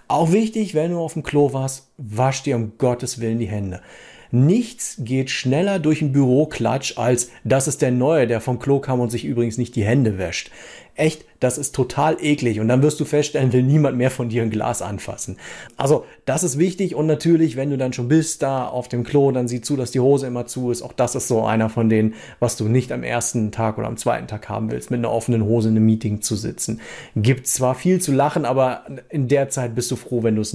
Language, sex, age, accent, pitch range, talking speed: German, male, 40-59, German, 120-150 Hz, 240 wpm